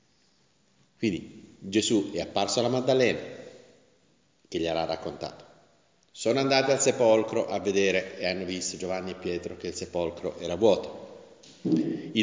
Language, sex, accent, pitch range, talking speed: Italian, male, native, 95-150 Hz, 130 wpm